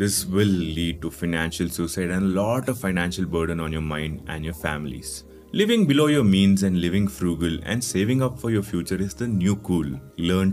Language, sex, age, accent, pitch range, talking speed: English, male, 30-49, Indian, 80-100 Hz, 205 wpm